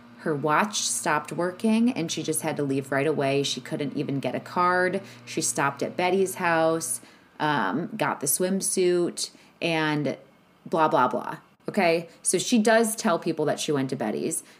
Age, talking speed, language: 20-39, 175 wpm, English